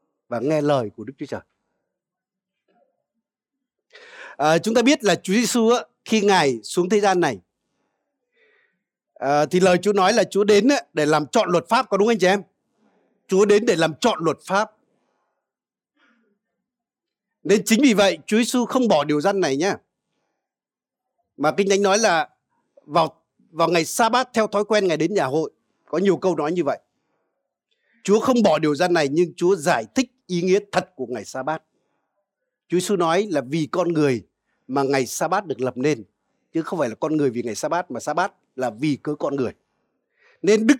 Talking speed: 195 wpm